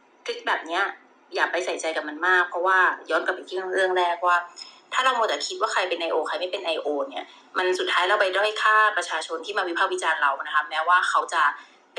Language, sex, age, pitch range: Thai, female, 20-39, 170-270 Hz